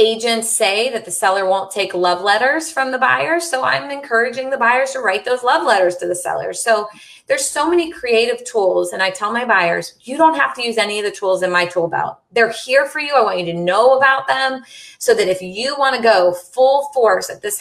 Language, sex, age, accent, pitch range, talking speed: English, female, 30-49, American, 190-255 Hz, 240 wpm